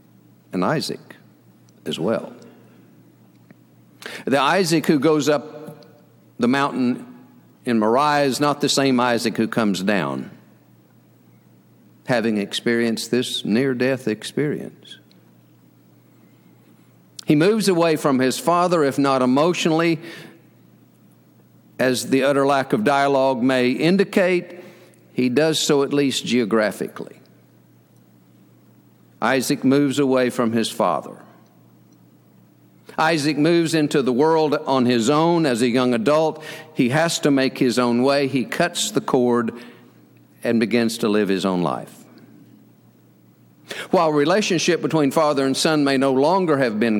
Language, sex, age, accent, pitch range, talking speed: English, male, 50-69, American, 105-155 Hz, 125 wpm